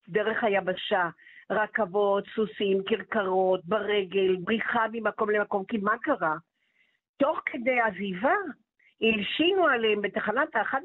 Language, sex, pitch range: Hebrew, female, 200-265 Hz